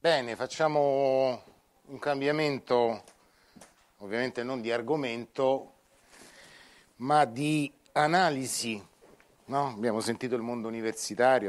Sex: male